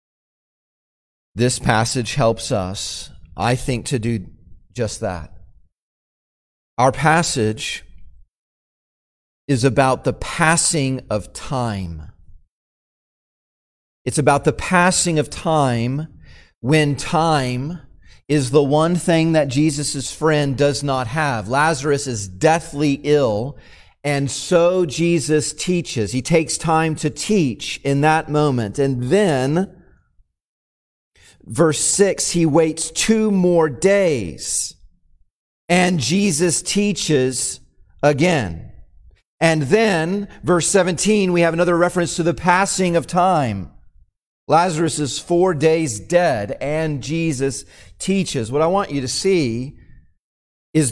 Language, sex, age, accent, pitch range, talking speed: English, male, 40-59, American, 125-170 Hz, 110 wpm